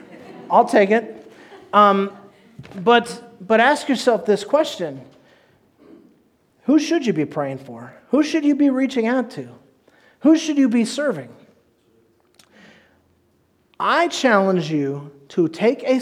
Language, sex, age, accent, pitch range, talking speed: English, male, 40-59, American, 145-200 Hz, 125 wpm